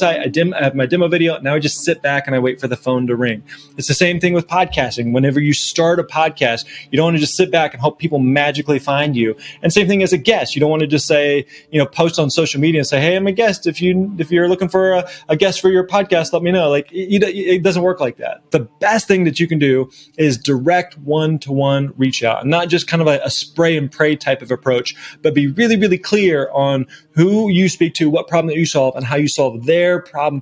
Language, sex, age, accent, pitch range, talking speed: English, male, 20-39, American, 140-170 Hz, 270 wpm